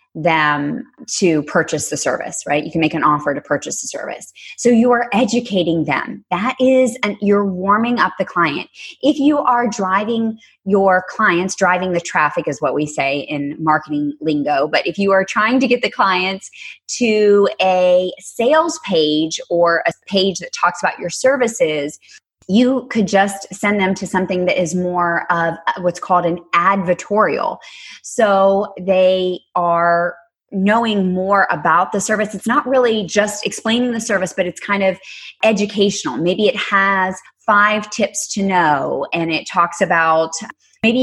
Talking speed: 165 wpm